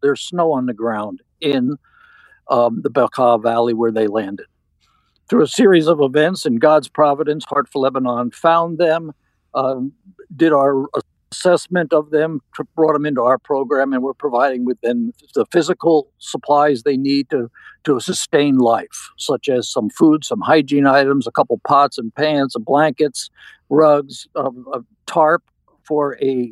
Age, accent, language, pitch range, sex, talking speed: 60-79, American, English, 130-160 Hz, male, 160 wpm